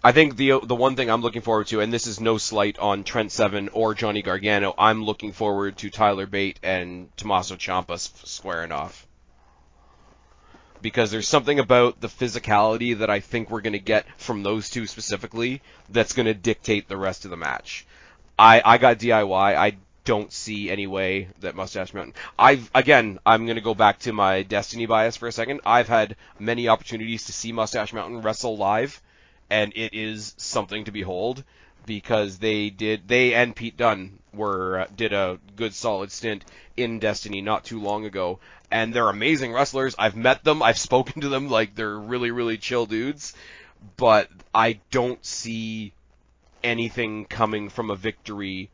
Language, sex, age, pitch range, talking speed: English, male, 30-49, 100-115 Hz, 180 wpm